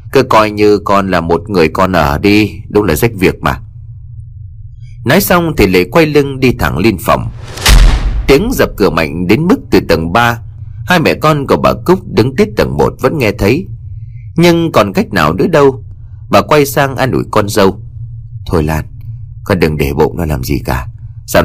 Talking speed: 200 wpm